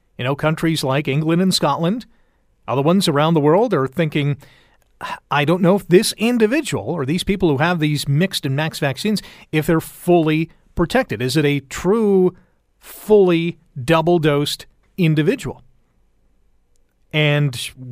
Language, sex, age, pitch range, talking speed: English, male, 40-59, 140-175 Hz, 140 wpm